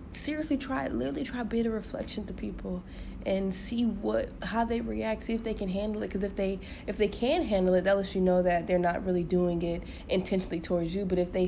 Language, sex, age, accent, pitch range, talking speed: English, female, 20-39, American, 175-225 Hz, 235 wpm